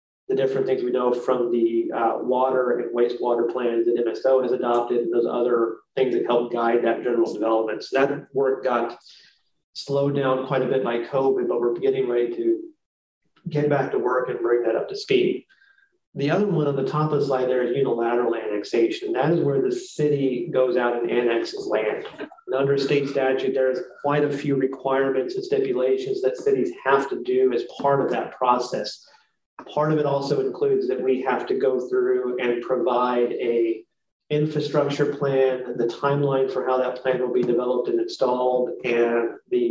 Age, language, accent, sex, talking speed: 30-49, English, American, male, 185 wpm